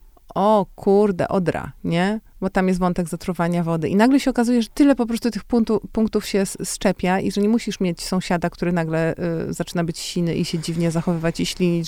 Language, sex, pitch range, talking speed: Polish, female, 170-210 Hz, 205 wpm